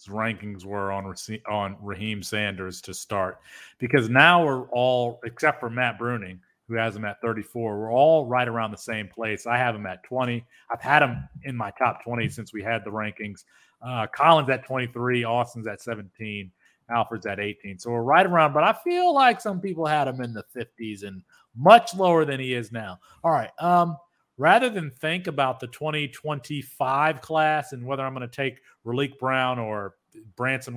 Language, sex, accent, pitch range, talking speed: English, male, American, 110-145 Hz, 190 wpm